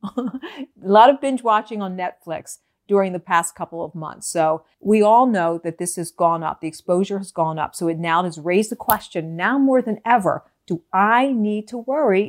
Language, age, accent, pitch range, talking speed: English, 50-69, American, 175-245 Hz, 210 wpm